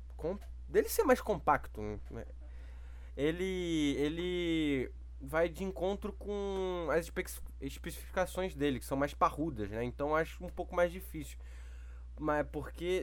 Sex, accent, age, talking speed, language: male, Brazilian, 20-39, 125 wpm, Portuguese